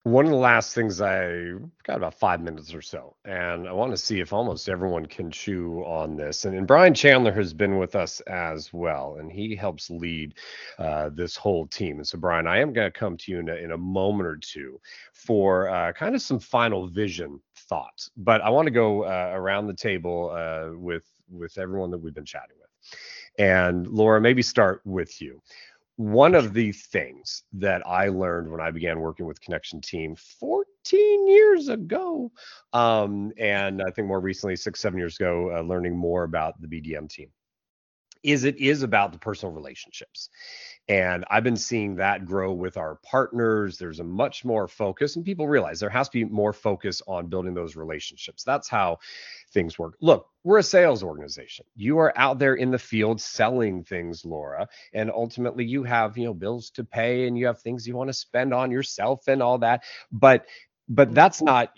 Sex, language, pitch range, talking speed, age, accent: male, English, 85-120 Hz, 195 wpm, 30-49, American